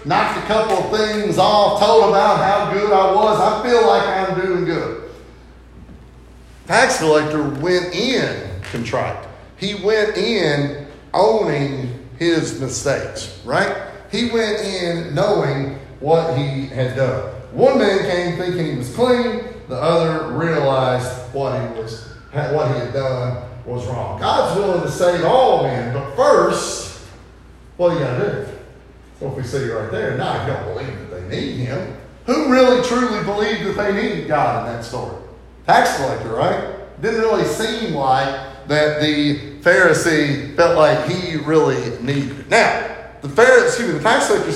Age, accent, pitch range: 40-59, American, 135-200 Hz